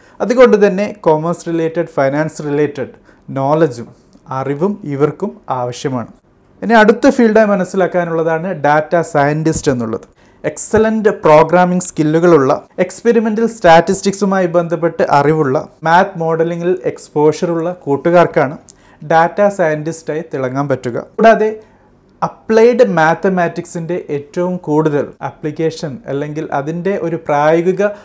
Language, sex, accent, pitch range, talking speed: Malayalam, male, native, 145-190 Hz, 90 wpm